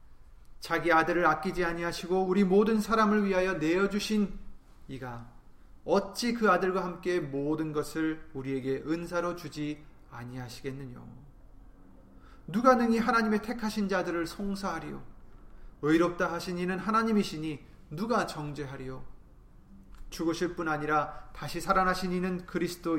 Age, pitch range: 30-49, 125-180 Hz